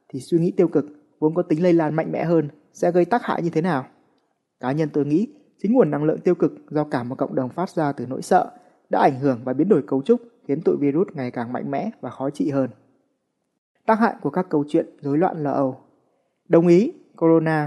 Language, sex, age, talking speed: Vietnamese, male, 20-39, 240 wpm